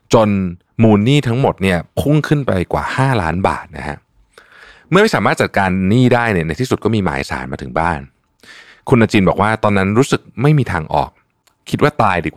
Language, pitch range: Thai, 80-115 Hz